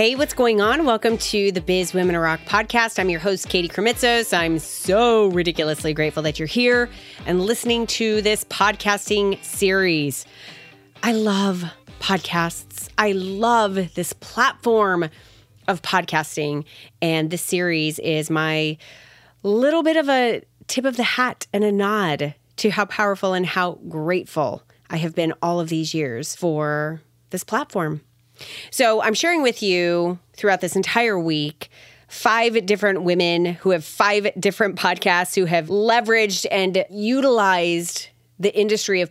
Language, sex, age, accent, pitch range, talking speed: English, female, 30-49, American, 160-215 Hz, 145 wpm